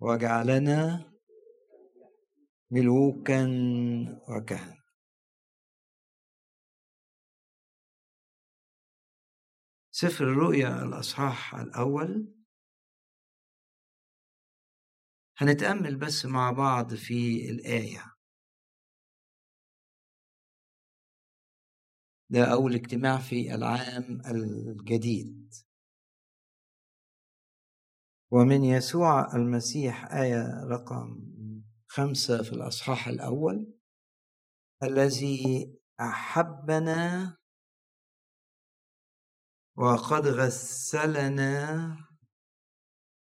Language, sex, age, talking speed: Arabic, male, 50-69, 45 wpm